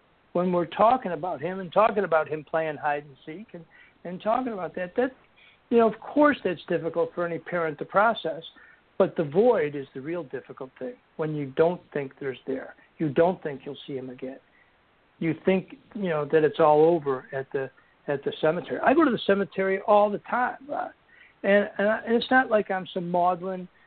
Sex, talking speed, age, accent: male, 205 wpm, 60-79, American